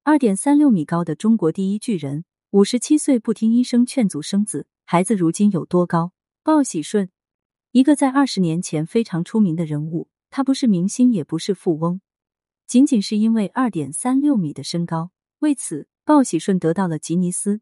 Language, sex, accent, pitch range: Chinese, female, native, 165-245 Hz